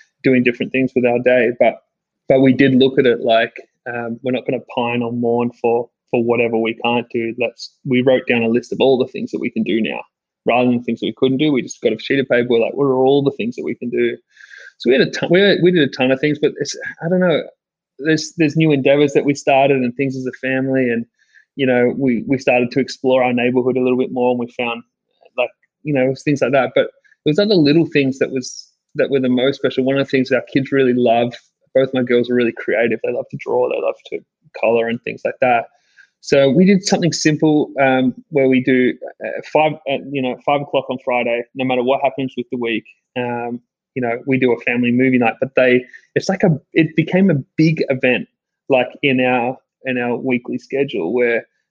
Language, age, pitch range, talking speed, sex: English, 20-39, 120-145 Hz, 245 wpm, male